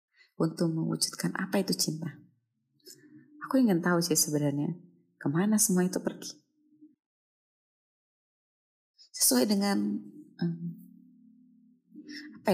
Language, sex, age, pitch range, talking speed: Indonesian, female, 30-49, 160-220 Hz, 85 wpm